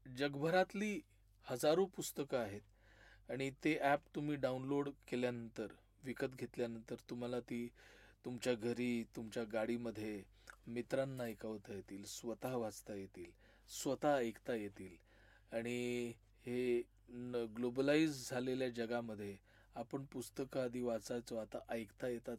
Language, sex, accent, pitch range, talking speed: Marathi, male, native, 100-125 Hz, 75 wpm